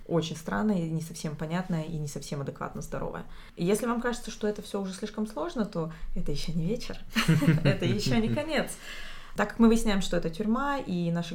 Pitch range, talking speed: 170-220 Hz, 195 wpm